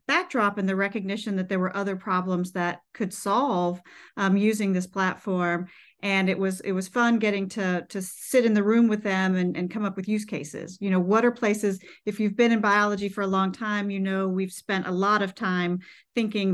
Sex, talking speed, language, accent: female, 220 wpm, English, American